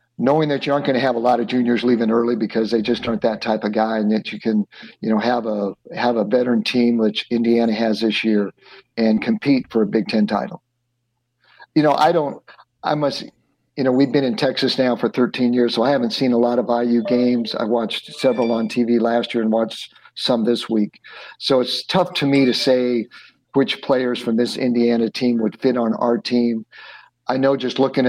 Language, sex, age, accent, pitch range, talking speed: English, male, 50-69, American, 115-125 Hz, 220 wpm